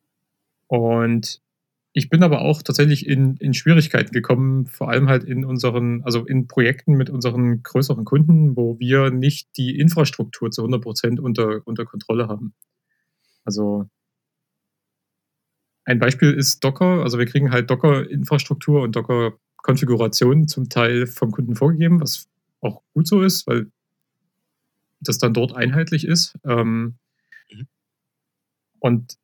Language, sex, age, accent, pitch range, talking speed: German, male, 30-49, German, 120-145 Hz, 130 wpm